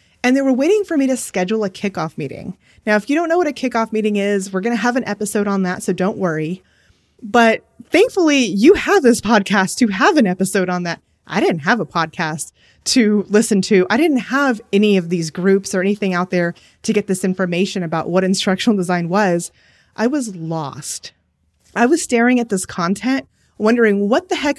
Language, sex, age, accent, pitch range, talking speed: English, female, 20-39, American, 190-265 Hz, 205 wpm